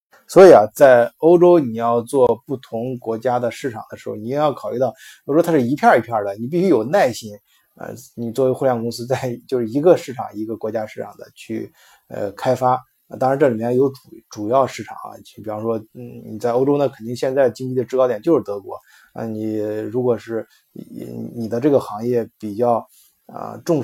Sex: male